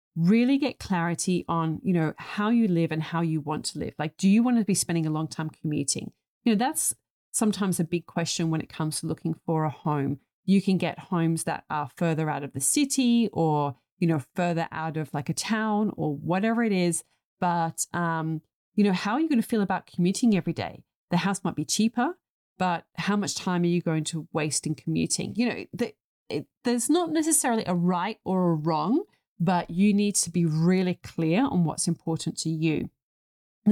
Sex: female